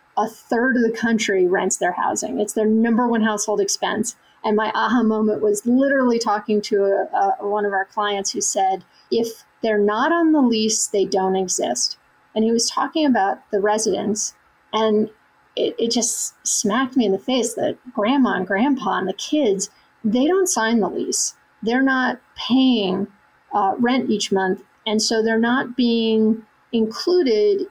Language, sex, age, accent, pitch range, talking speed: English, female, 40-59, American, 210-245 Hz, 170 wpm